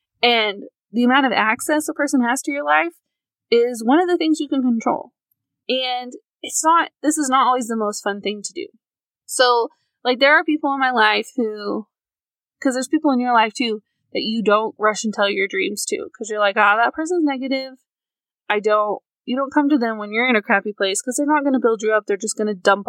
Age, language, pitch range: 20-39, English, 210-275 Hz